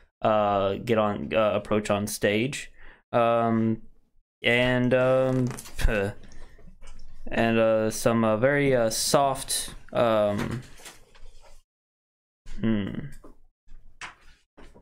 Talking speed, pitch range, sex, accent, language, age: 75 wpm, 100-120 Hz, male, American, English, 20-39